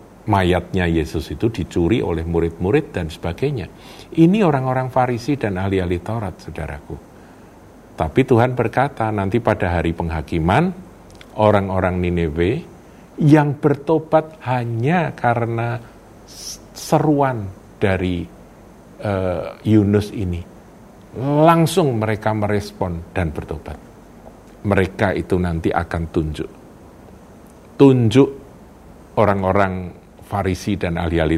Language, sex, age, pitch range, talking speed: Indonesian, male, 50-69, 90-145 Hz, 90 wpm